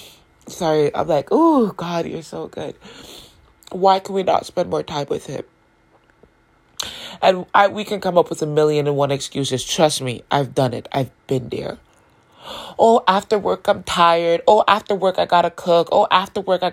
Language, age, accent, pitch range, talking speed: English, 20-39, American, 140-185 Hz, 185 wpm